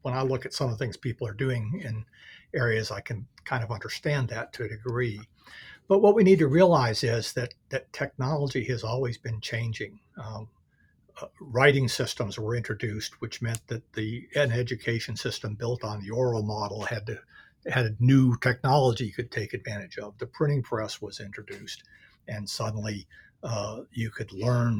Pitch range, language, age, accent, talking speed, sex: 110-130 Hz, English, 60-79, American, 185 wpm, male